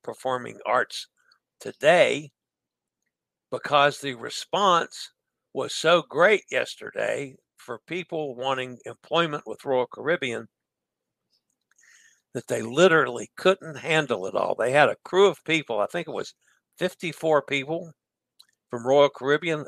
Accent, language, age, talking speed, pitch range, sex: American, English, 60-79, 120 wpm, 135-180 Hz, male